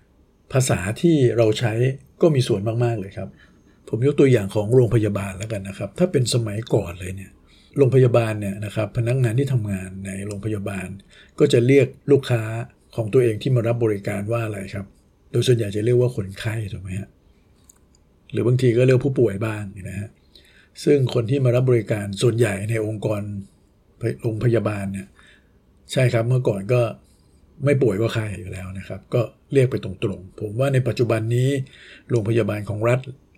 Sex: male